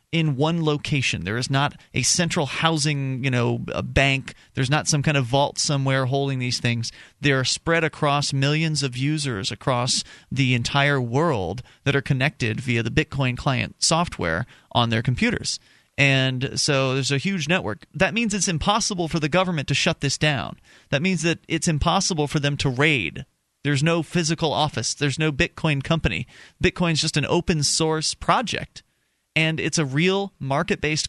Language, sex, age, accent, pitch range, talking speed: English, male, 30-49, American, 130-165 Hz, 175 wpm